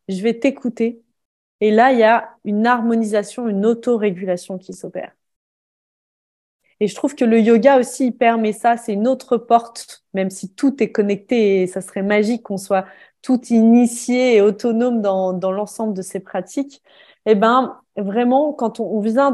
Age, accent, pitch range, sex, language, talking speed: 20-39, French, 220-265 Hz, female, French, 175 wpm